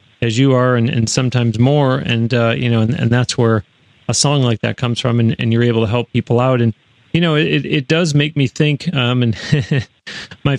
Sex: male